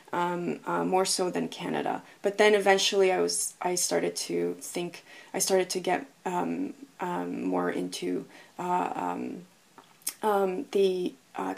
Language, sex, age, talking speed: English, female, 20-39, 145 wpm